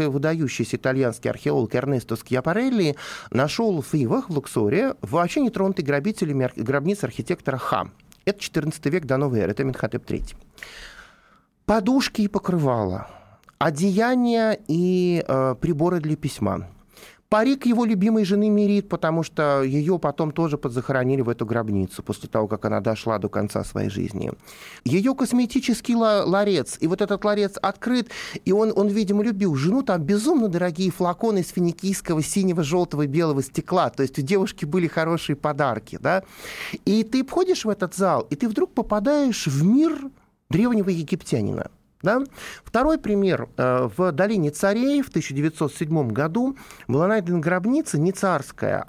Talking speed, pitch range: 140 wpm, 135-205 Hz